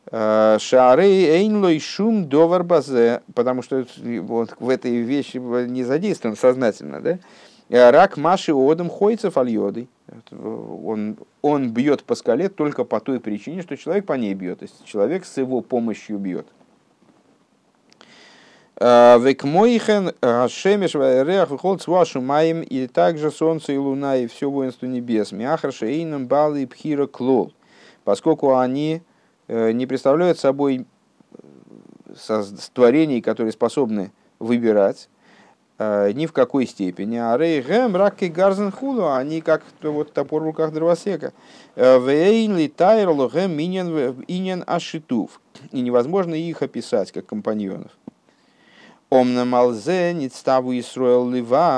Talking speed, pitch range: 90 wpm, 125-170 Hz